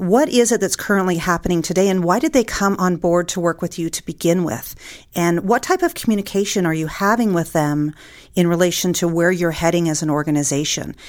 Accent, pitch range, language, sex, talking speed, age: American, 160-210 Hz, English, female, 215 wpm, 40-59